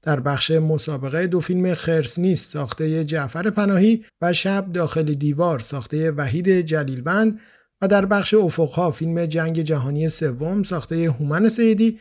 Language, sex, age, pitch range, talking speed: Persian, male, 50-69, 150-185 Hz, 135 wpm